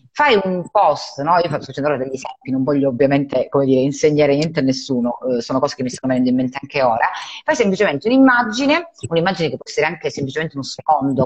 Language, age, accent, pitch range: Italian, 30-49, native, 130-165 Hz